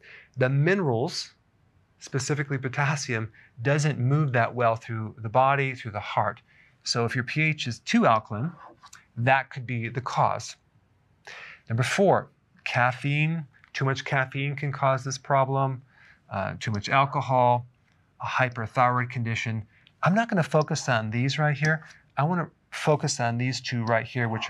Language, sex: English, male